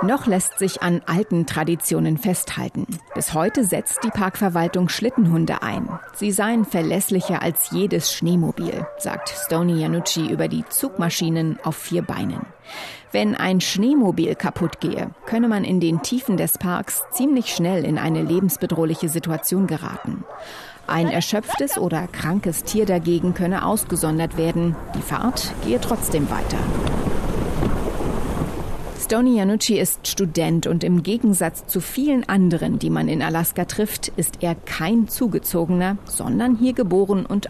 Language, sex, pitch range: German, female, 165-205 Hz